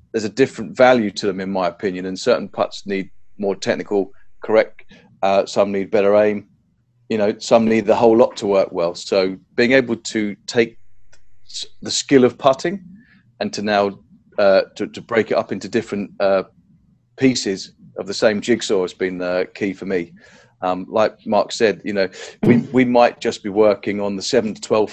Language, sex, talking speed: English, male, 195 wpm